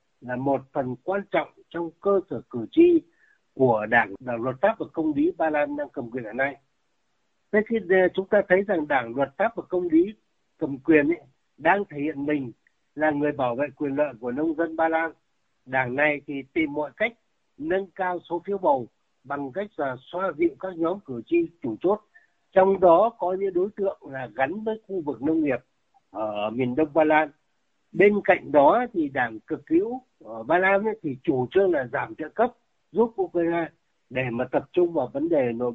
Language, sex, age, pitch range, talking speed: Vietnamese, male, 60-79, 140-200 Hz, 205 wpm